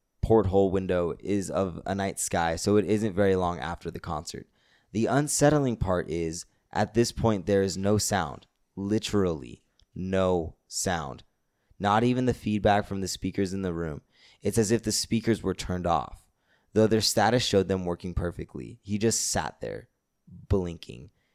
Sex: male